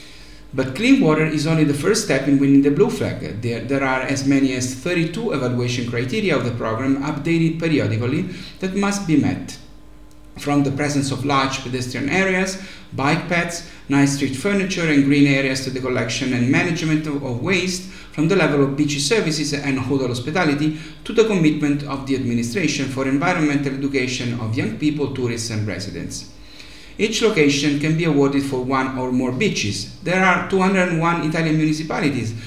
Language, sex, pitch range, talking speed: English, male, 130-160 Hz, 170 wpm